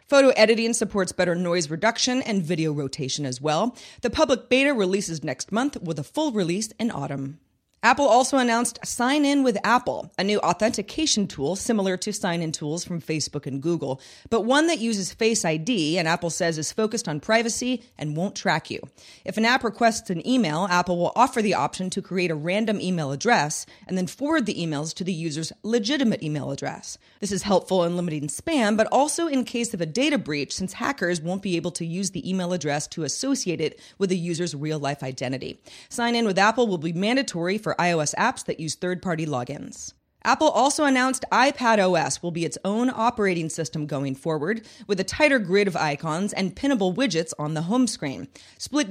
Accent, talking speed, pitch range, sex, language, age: American, 200 wpm, 165-230 Hz, female, English, 30-49